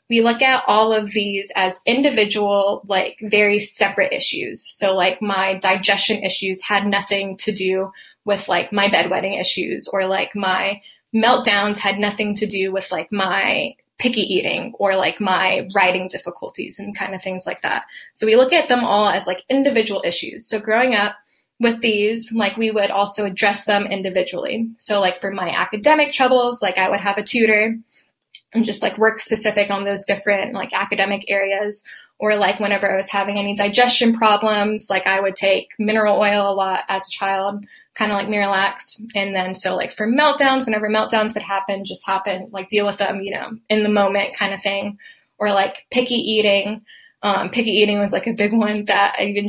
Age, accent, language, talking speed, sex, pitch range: 10-29, American, English, 190 wpm, female, 195-215 Hz